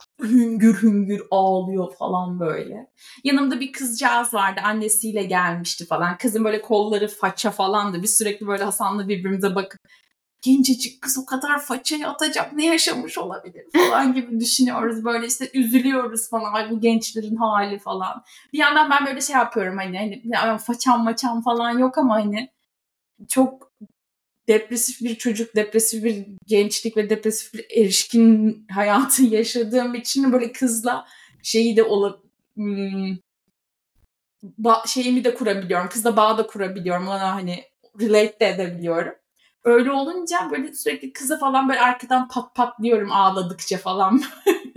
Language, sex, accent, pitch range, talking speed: Turkish, female, native, 200-260 Hz, 135 wpm